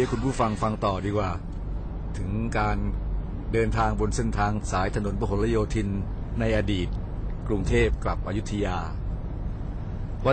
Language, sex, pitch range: Thai, male, 100-125 Hz